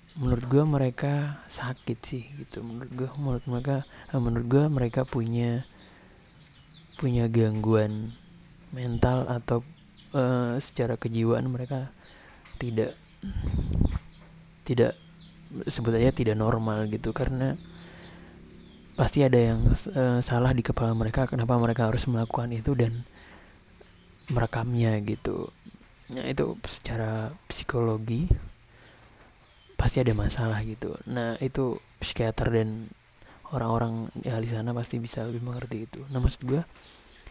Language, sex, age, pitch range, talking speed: Indonesian, male, 30-49, 110-130 Hz, 110 wpm